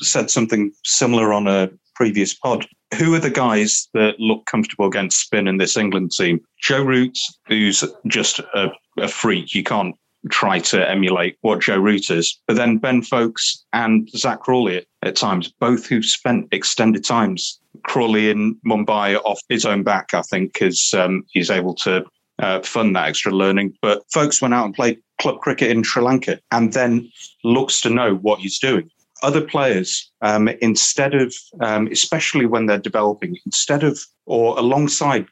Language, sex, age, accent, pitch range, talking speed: English, male, 30-49, British, 100-125 Hz, 175 wpm